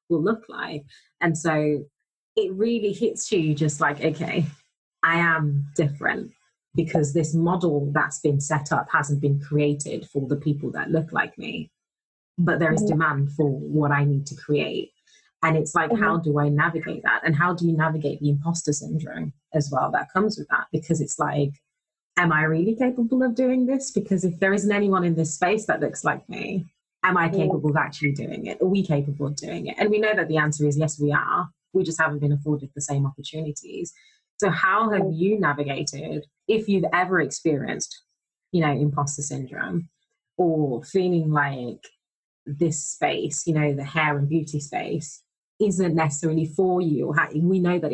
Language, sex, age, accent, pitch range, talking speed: English, female, 20-39, British, 145-180 Hz, 185 wpm